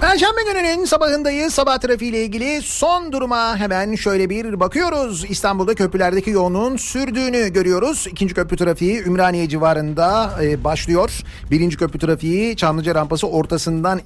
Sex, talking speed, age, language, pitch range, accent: male, 125 wpm, 40-59, Turkish, 155-195 Hz, native